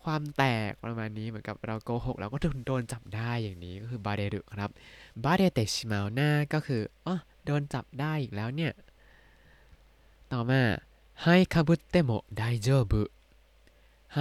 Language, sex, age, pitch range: Thai, male, 20-39, 110-155 Hz